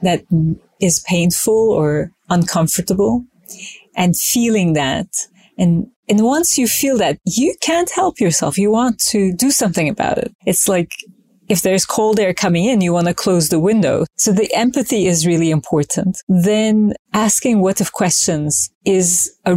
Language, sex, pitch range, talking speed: English, female, 175-210 Hz, 160 wpm